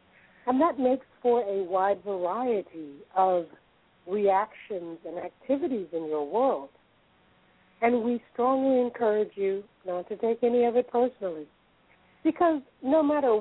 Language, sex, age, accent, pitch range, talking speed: English, female, 60-79, American, 180-240 Hz, 130 wpm